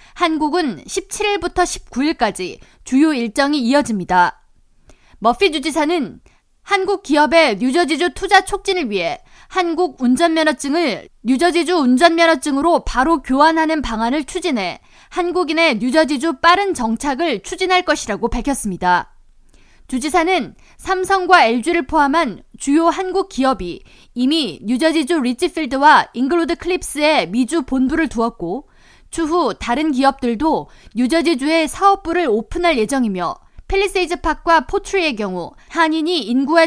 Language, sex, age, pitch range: Korean, female, 20-39, 255-340 Hz